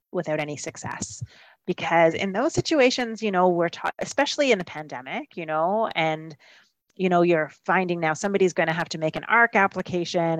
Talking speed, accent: 185 wpm, American